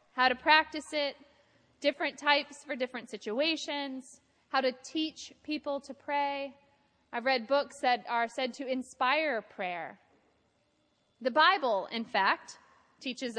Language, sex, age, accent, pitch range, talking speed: English, female, 30-49, American, 225-290 Hz, 130 wpm